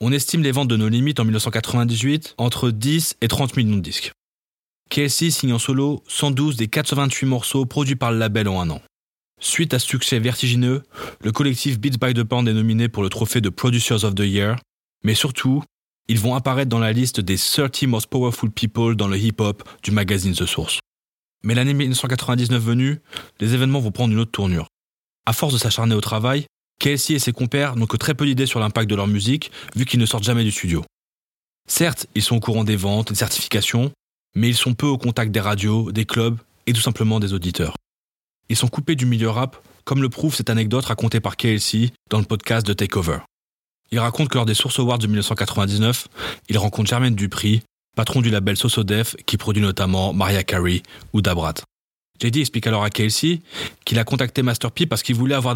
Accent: French